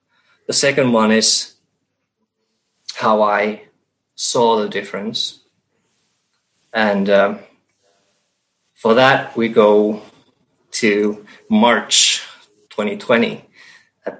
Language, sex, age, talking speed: English, male, 20-39, 80 wpm